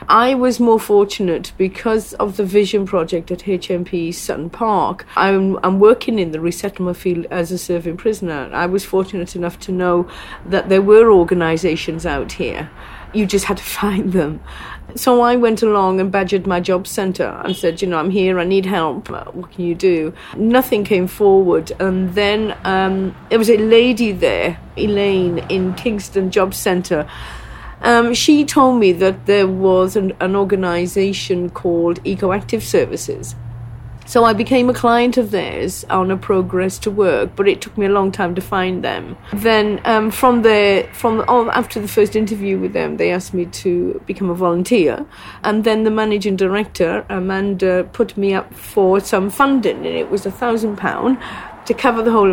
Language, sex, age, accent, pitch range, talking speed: English, female, 40-59, British, 180-220 Hz, 175 wpm